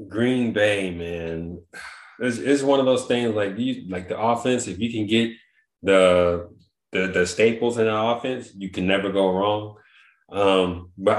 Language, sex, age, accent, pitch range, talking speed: English, male, 20-39, American, 90-115 Hz, 170 wpm